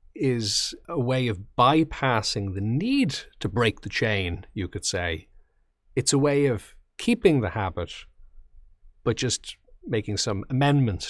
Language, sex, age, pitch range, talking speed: English, male, 40-59, 95-130 Hz, 140 wpm